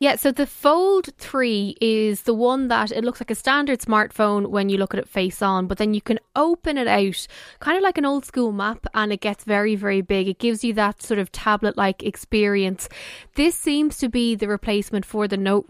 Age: 10-29